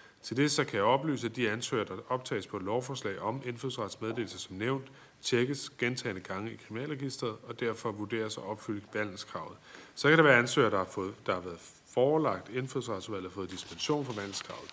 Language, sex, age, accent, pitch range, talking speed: Danish, male, 30-49, native, 110-135 Hz, 195 wpm